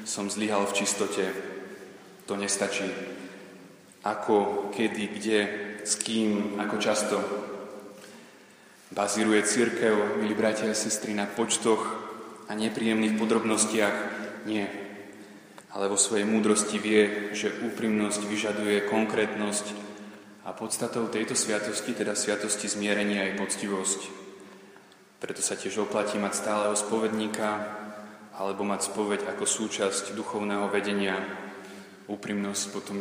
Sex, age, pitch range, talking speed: male, 20-39, 100-110 Hz, 105 wpm